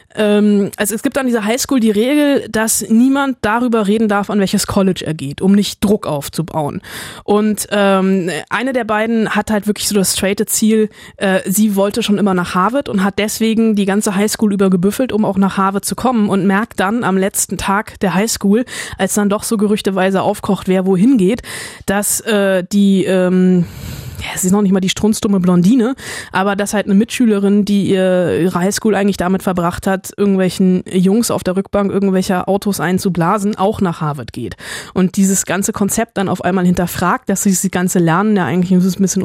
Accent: German